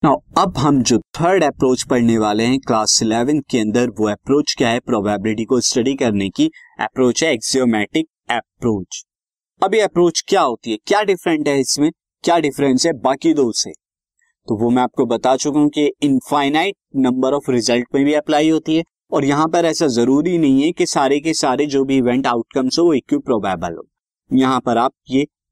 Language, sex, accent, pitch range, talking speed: Hindi, male, native, 125-170 Hz, 190 wpm